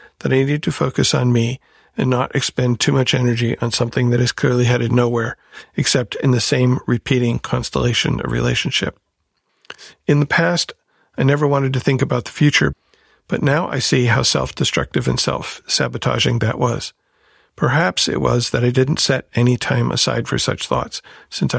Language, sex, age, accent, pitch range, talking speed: English, male, 50-69, American, 120-135 Hz, 175 wpm